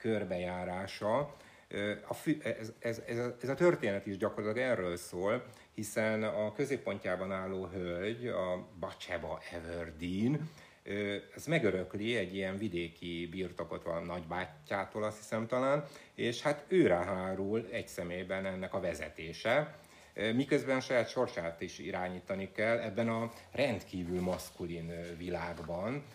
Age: 60-79